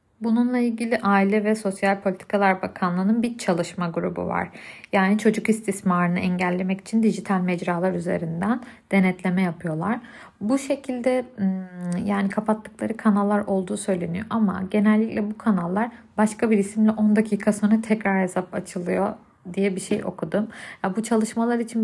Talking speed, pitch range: 130 wpm, 190-220 Hz